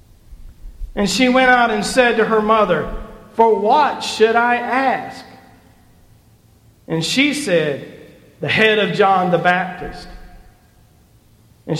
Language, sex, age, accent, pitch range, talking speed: English, male, 40-59, American, 150-225 Hz, 120 wpm